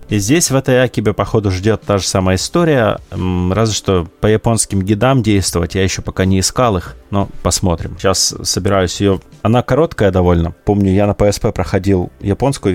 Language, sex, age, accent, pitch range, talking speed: Russian, male, 30-49, native, 90-110 Hz, 175 wpm